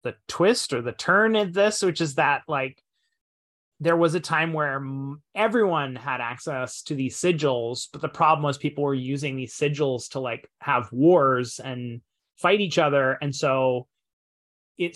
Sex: male